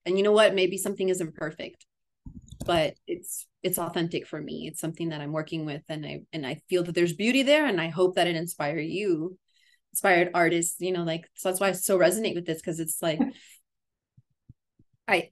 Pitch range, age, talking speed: 175-215 Hz, 20-39, 210 wpm